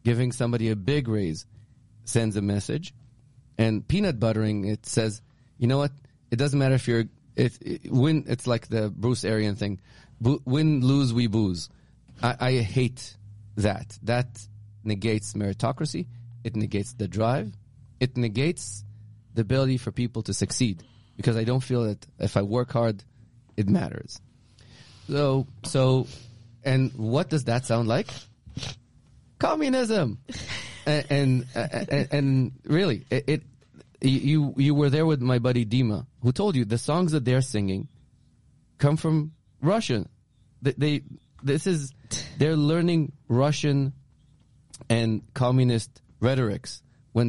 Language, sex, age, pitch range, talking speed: English, male, 30-49, 115-135 Hz, 140 wpm